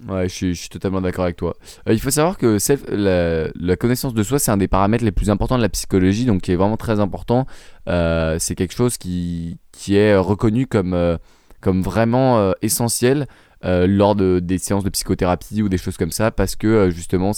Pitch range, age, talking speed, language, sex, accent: 90-115 Hz, 20-39, 230 wpm, French, male, French